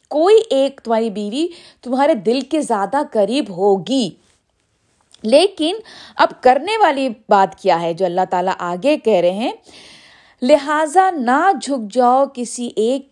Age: 50-69